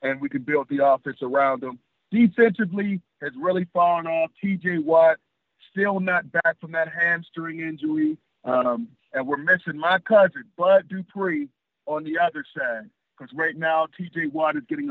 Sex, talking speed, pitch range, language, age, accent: male, 165 wpm, 150-185 Hz, English, 40-59, American